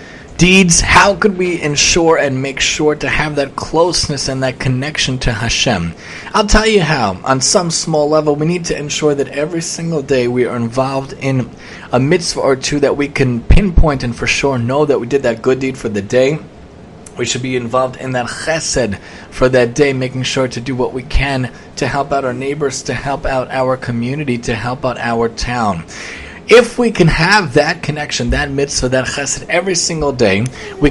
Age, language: 30-49, English